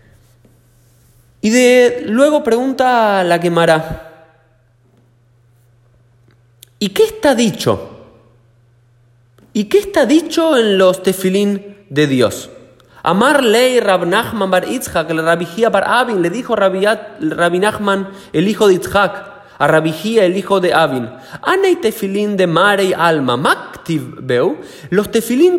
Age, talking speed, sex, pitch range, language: 30-49, 115 wpm, male, 140-210 Hz, Spanish